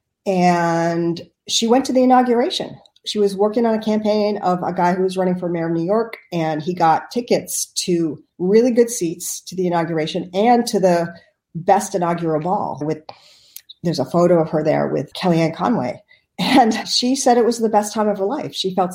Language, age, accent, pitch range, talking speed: English, 40-59, American, 160-205 Hz, 200 wpm